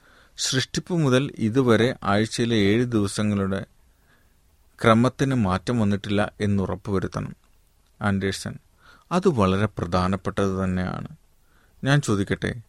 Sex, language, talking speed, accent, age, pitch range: male, Malayalam, 75 wpm, native, 30-49, 95-120 Hz